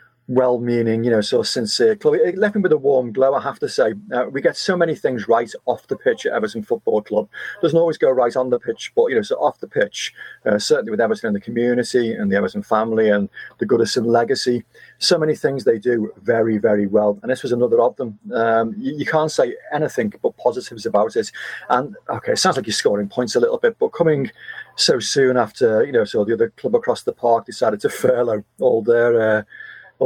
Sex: male